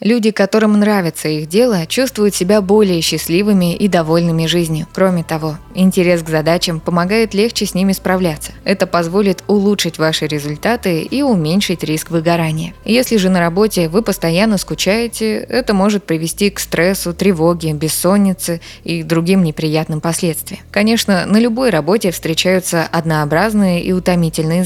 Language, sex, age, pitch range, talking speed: Russian, female, 20-39, 160-200 Hz, 140 wpm